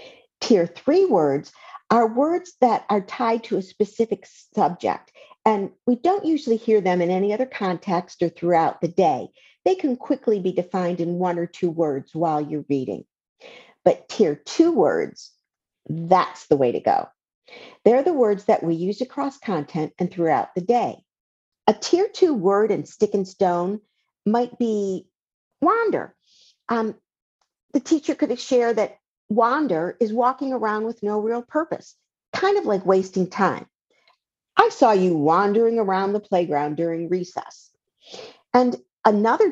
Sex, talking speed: female, 155 wpm